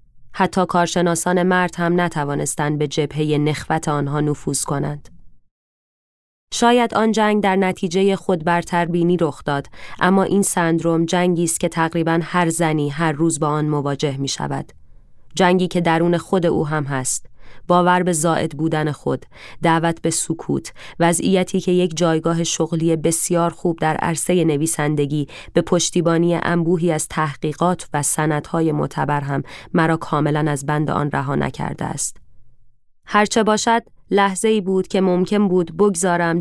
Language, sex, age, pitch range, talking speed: Persian, female, 20-39, 150-180 Hz, 140 wpm